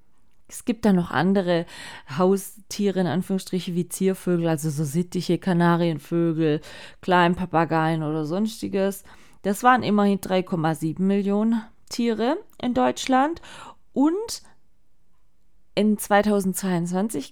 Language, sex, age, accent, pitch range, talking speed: German, female, 20-39, German, 185-250 Hz, 95 wpm